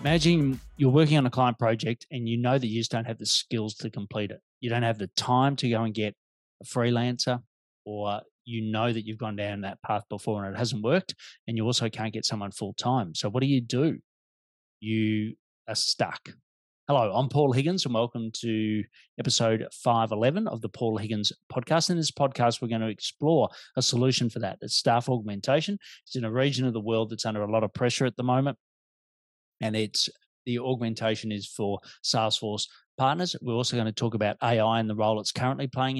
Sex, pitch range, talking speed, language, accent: male, 110-130 Hz, 210 wpm, English, Australian